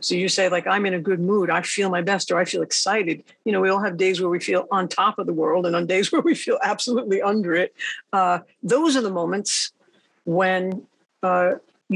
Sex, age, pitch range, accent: female, 50-69, 180-235 Hz, American